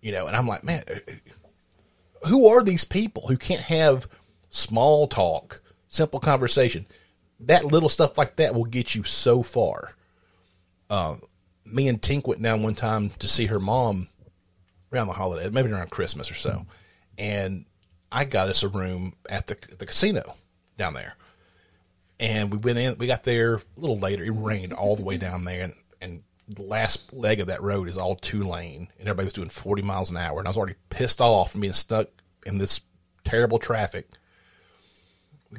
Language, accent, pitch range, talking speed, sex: English, American, 95-125 Hz, 180 wpm, male